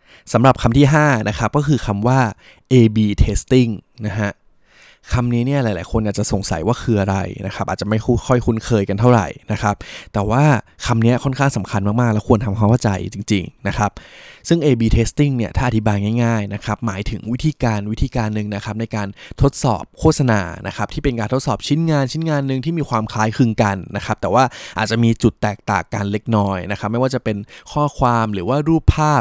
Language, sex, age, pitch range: Thai, male, 20-39, 105-125 Hz